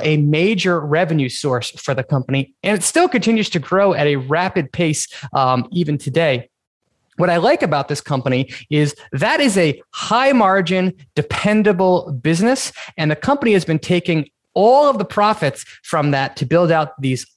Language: English